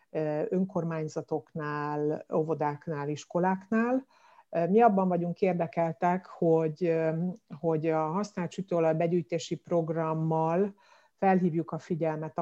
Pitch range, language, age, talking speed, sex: 160-190 Hz, Hungarian, 60-79, 80 wpm, female